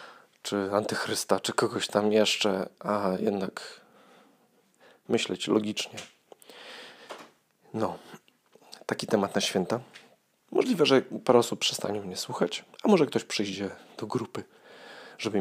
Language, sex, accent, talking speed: Polish, male, native, 115 wpm